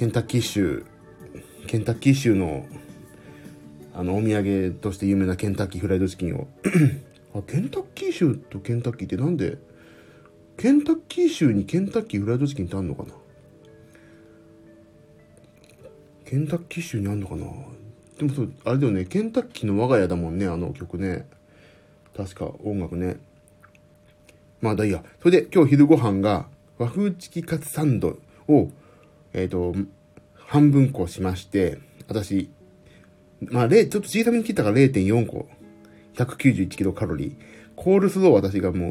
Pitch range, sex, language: 95-160 Hz, male, Japanese